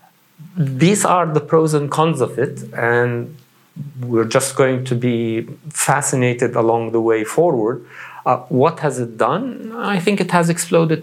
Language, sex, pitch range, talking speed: English, male, 120-155 Hz, 160 wpm